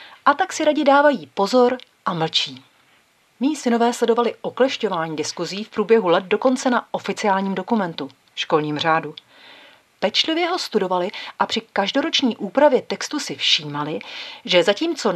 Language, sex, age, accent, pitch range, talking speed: Czech, female, 40-59, native, 180-260 Hz, 140 wpm